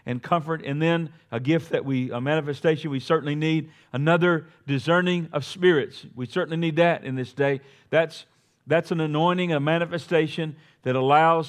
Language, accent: English, American